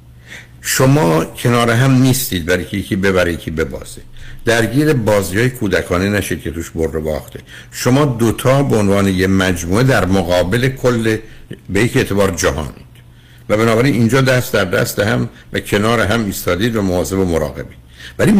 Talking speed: 155 wpm